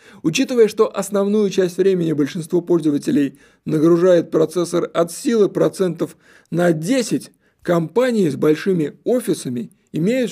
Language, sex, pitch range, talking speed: Russian, male, 150-205 Hz, 110 wpm